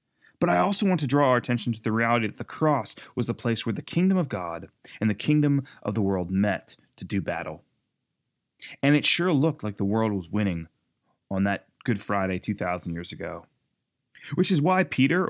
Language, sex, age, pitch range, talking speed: English, male, 30-49, 100-125 Hz, 205 wpm